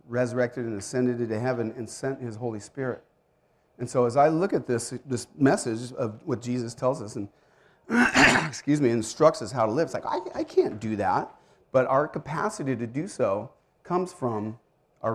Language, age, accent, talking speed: English, 40-59, American, 190 wpm